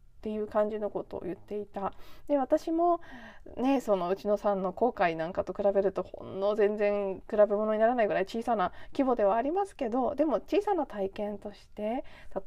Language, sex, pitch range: Japanese, female, 185-245 Hz